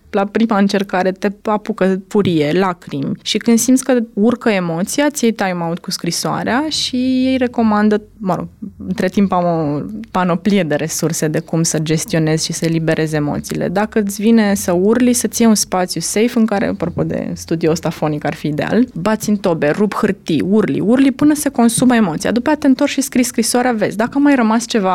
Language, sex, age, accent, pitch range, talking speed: Romanian, female, 20-39, native, 175-230 Hz, 190 wpm